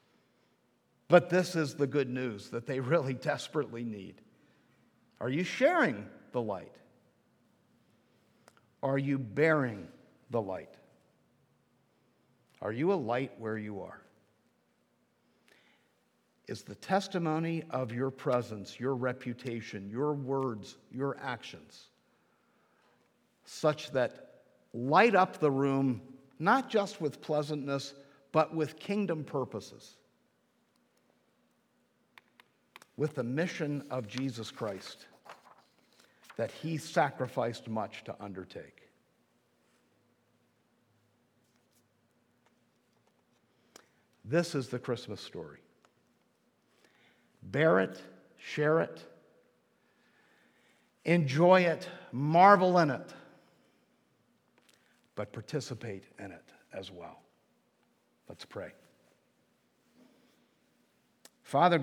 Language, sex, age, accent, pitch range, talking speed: English, male, 50-69, American, 120-155 Hz, 85 wpm